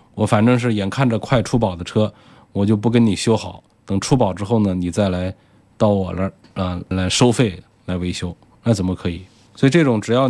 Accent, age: native, 20-39